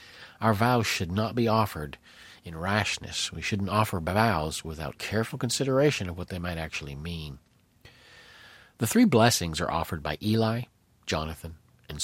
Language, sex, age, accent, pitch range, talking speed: English, male, 50-69, American, 85-110 Hz, 150 wpm